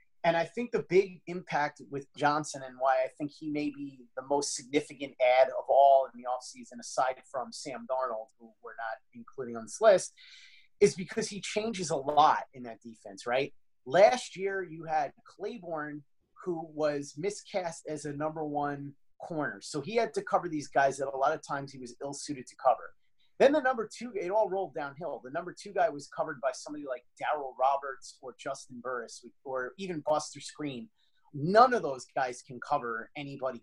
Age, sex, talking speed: 30-49, male, 195 wpm